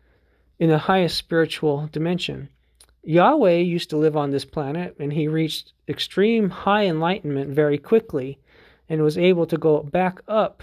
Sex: male